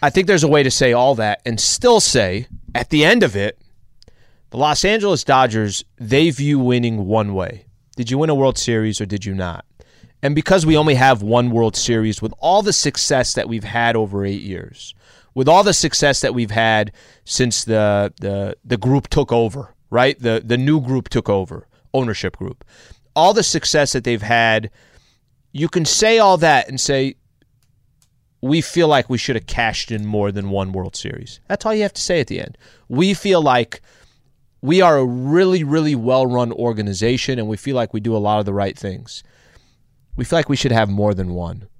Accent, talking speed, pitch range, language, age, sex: American, 205 wpm, 110-145 Hz, English, 30-49, male